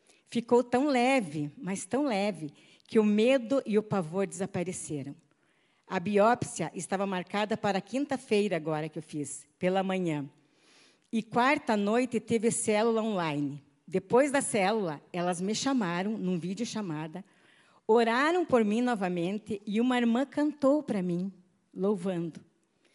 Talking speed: 135 wpm